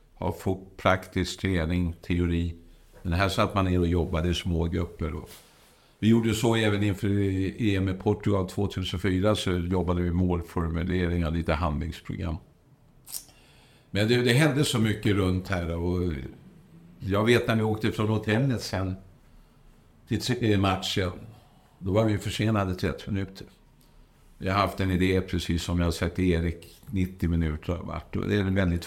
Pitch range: 85-110 Hz